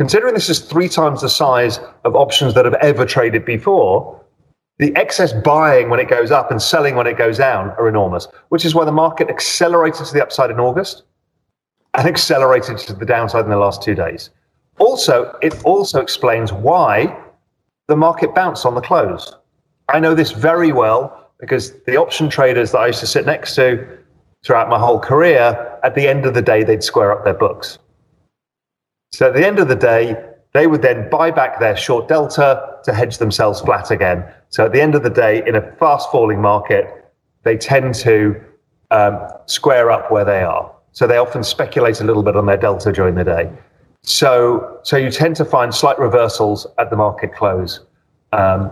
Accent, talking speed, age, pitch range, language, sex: British, 195 wpm, 40-59, 115-165 Hz, English, male